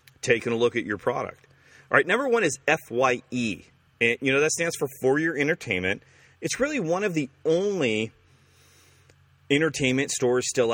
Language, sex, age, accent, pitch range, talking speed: English, male, 40-59, American, 115-165 Hz, 170 wpm